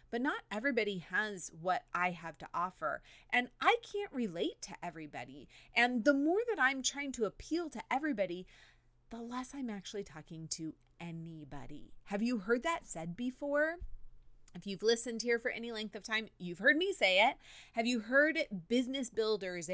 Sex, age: female, 30-49